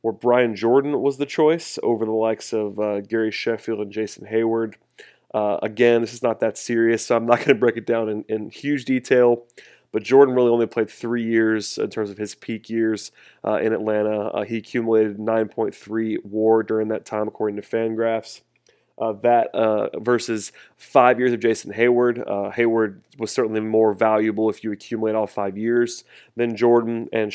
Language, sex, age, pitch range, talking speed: English, male, 30-49, 110-120 Hz, 190 wpm